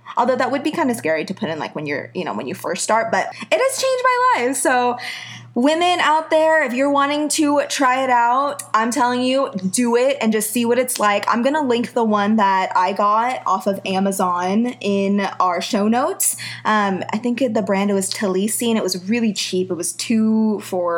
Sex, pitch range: female, 190-255 Hz